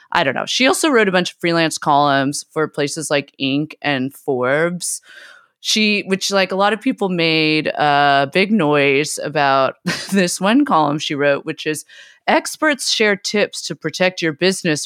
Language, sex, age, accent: English, female, 30-49, American